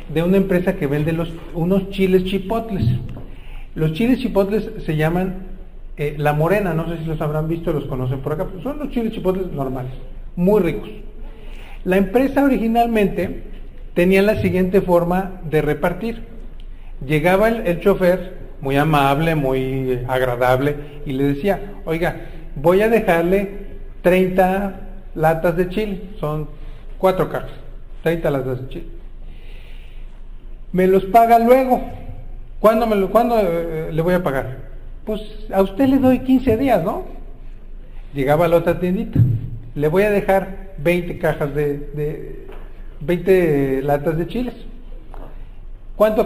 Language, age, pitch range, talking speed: Spanish, 40-59, 145-195 Hz, 140 wpm